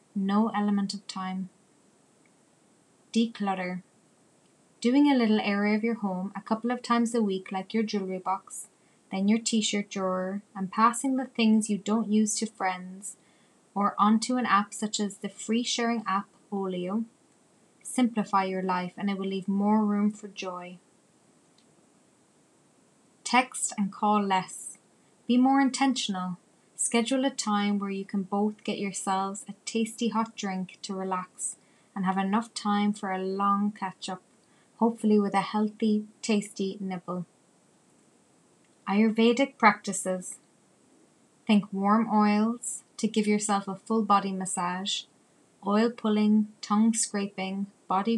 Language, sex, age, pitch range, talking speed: English, female, 20-39, 195-220 Hz, 135 wpm